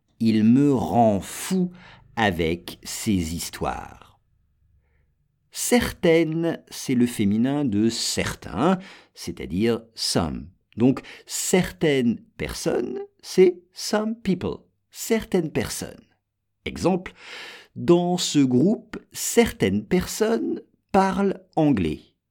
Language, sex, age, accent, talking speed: English, male, 50-69, French, 85 wpm